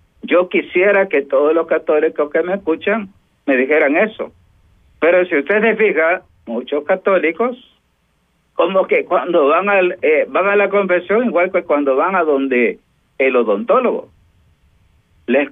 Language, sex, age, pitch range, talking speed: Spanish, male, 50-69, 145-205 Hz, 145 wpm